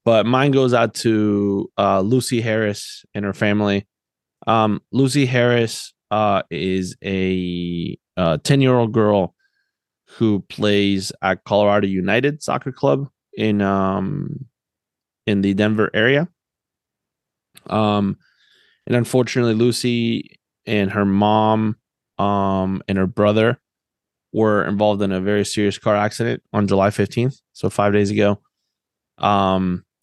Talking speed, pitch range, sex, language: 120 wpm, 95-115 Hz, male, English